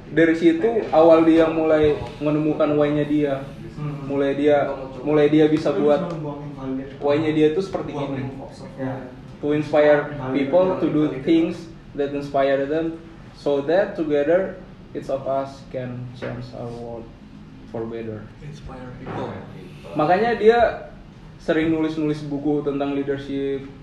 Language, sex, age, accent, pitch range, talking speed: Indonesian, male, 20-39, native, 130-155 Hz, 125 wpm